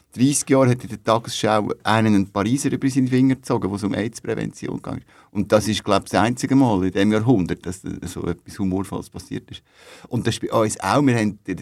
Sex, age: male, 60-79